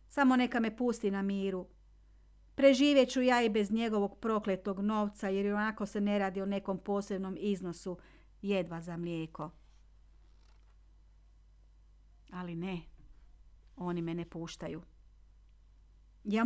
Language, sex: Croatian, female